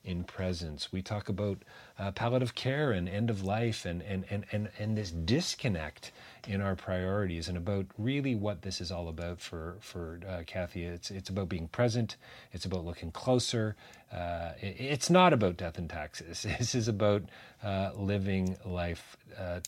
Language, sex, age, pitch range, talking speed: English, male, 40-59, 90-120 Hz, 175 wpm